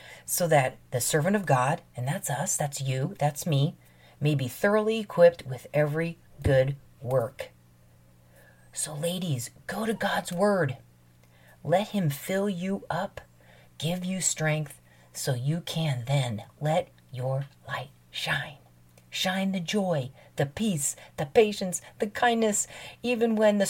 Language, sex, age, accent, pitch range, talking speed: English, female, 40-59, American, 130-180 Hz, 140 wpm